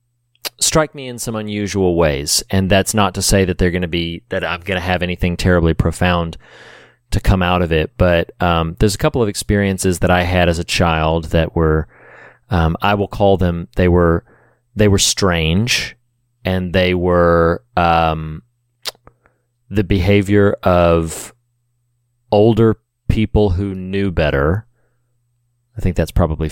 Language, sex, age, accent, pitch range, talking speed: English, male, 30-49, American, 85-115 Hz, 160 wpm